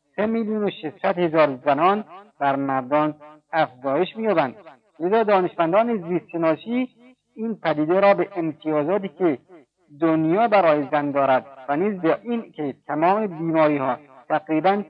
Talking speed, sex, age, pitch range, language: 125 wpm, male, 50-69, 145-195 Hz, Persian